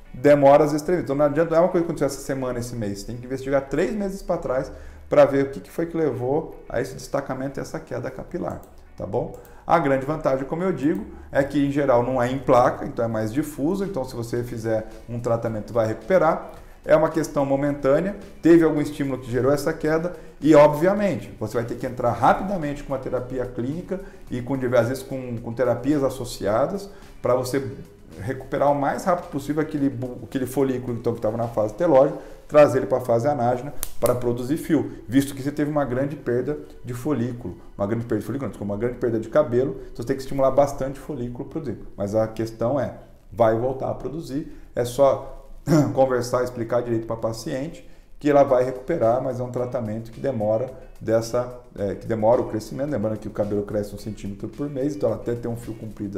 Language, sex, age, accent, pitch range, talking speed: Portuguese, male, 40-59, Brazilian, 115-145 Hz, 205 wpm